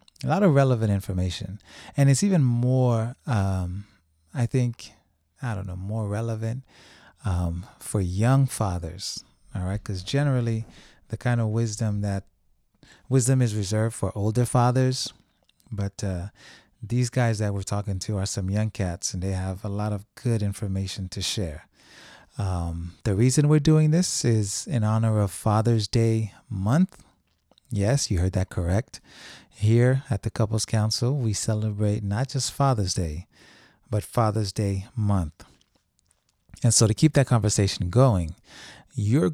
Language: English